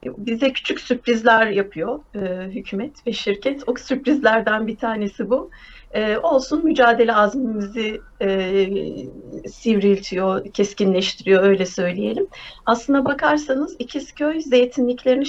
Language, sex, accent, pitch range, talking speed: Turkish, female, native, 205-260 Hz, 100 wpm